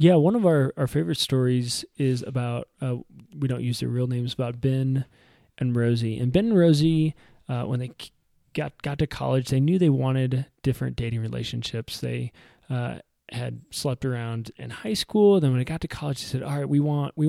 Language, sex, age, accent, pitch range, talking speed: English, male, 20-39, American, 120-145 Hz, 205 wpm